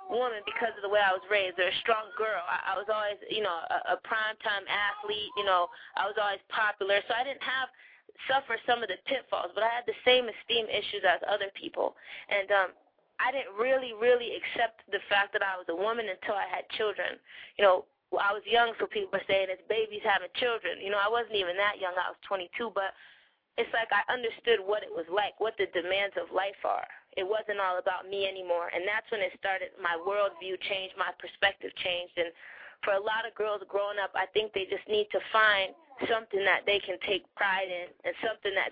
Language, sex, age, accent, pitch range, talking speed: English, female, 20-39, American, 195-245 Hz, 225 wpm